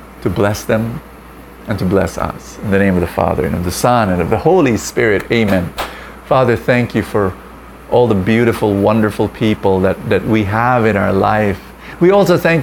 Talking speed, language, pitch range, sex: 200 wpm, English, 95-120 Hz, male